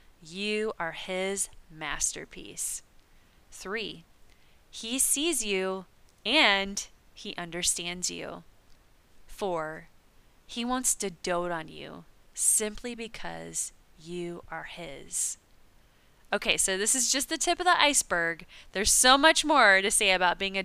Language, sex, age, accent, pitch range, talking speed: English, female, 20-39, American, 170-215 Hz, 125 wpm